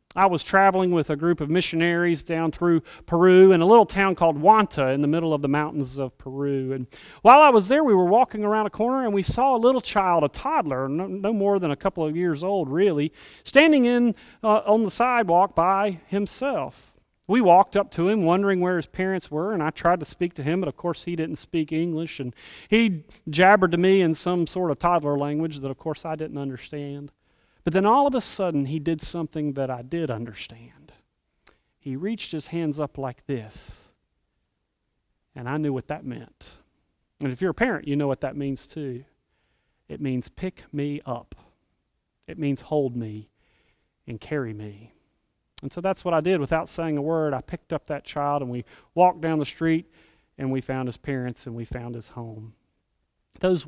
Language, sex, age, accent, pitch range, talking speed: English, male, 40-59, American, 135-185 Hz, 205 wpm